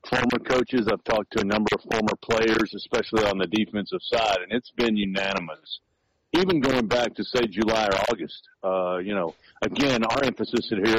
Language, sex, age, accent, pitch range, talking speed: English, male, 50-69, American, 105-125 Hz, 185 wpm